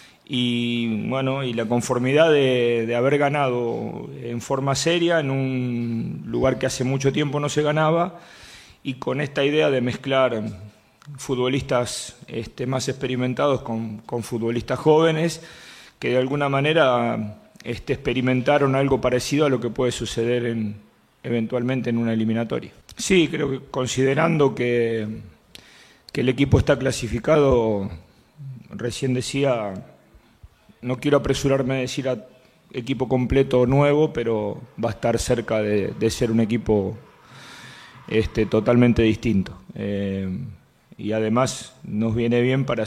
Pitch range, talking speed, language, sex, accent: 115-135 Hz, 135 wpm, Spanish, male, Argentinian